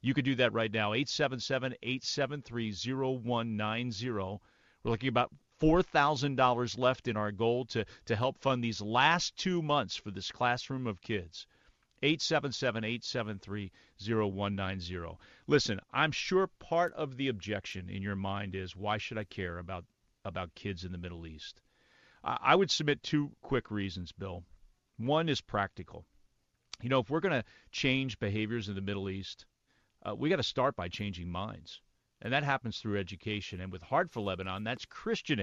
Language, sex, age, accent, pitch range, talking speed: English, male, 40-59, American, 100-135 Hz, 160 wpm